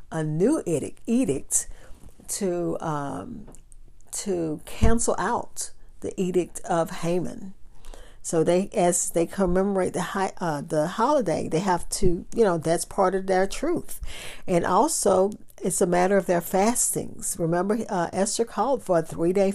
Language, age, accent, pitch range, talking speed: English, 50-69, American, 170-210 Hz, 145 wpm